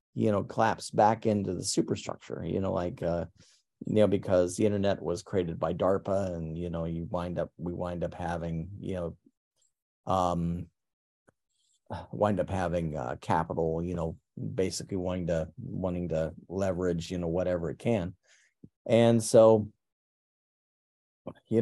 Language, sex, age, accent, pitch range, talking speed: English, male, 40-59, American, 85-105 Hz, 150 wpm